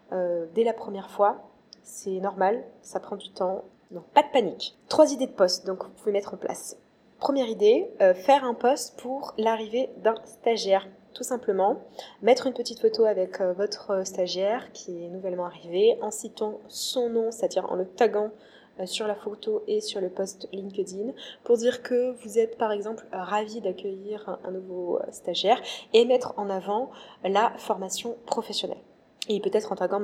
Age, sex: 20-39, female